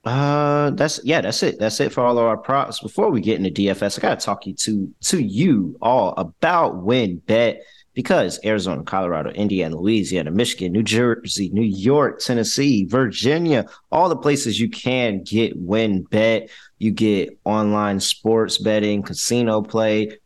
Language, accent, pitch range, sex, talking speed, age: English, American, 100-120 Hz, male, 165 wpm, 20-39